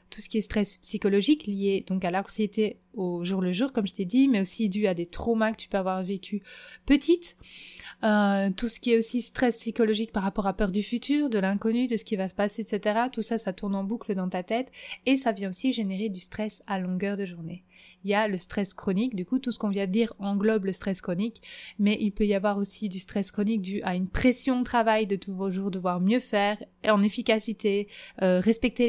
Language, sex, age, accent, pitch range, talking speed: French, female, 20-39, French, 195-240 Hz, 245 wpm